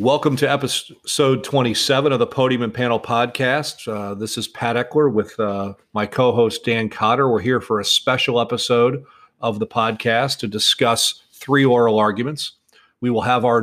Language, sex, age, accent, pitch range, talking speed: English, male, 40-59, American, 110-130 Hz, 170 wpm